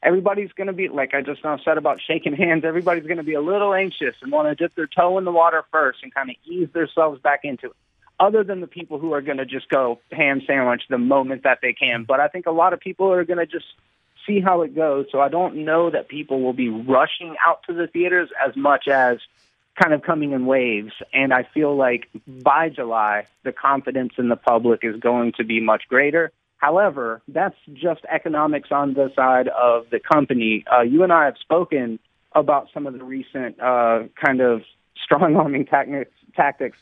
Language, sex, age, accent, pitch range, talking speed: English, male, 30-49, American, 125-165 Hz, 215 wpm